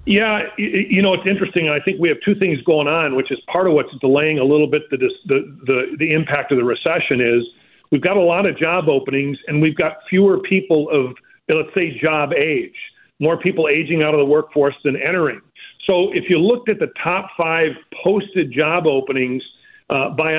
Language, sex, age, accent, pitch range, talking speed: English, male, 40-59, American, 145-185 Hz, 205 wpm